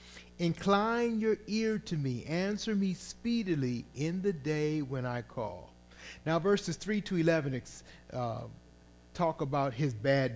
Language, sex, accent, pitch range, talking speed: English, male, American, 110-170 Hz, 140 wpm